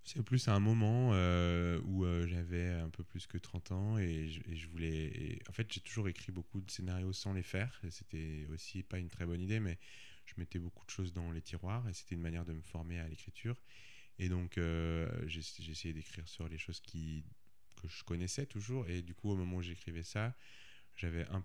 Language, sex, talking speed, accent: French, male, 230 wpm, French